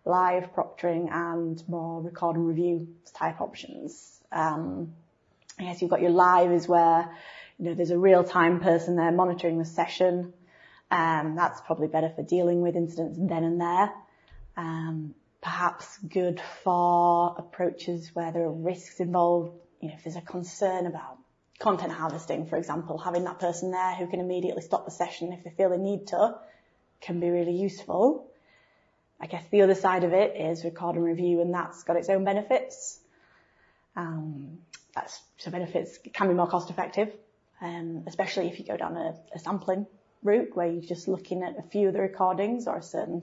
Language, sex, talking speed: English, female, 180 wpm